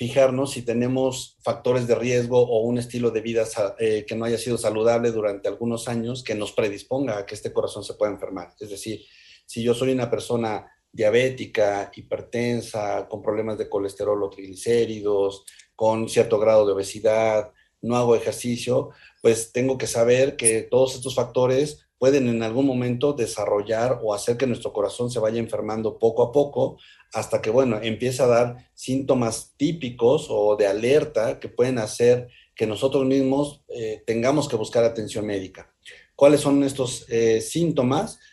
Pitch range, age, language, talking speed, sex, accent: 110-130 Hz, 40-59, Spanish, 165 wpm, male, Mexican